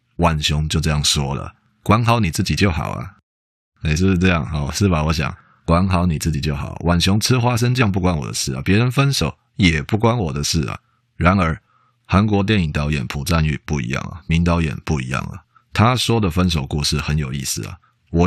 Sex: male